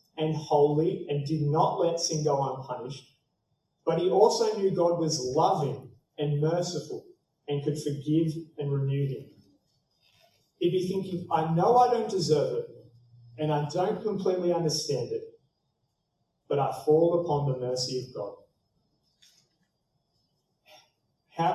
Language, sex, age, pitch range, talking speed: English, male, 30-49, 140-180 Hz, 135 wpm